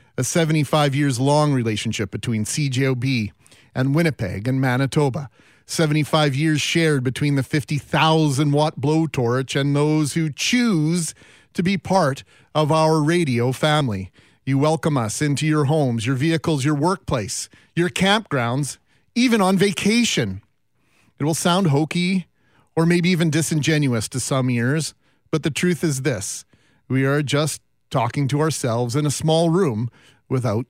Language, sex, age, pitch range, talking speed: English, male, 40-59, 130-165 Hz, 140 wpm